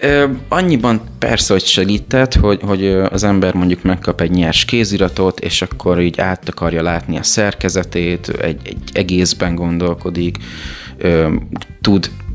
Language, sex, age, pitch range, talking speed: Hungarian, male, 20-39, 85-110 Hz, 125 wpm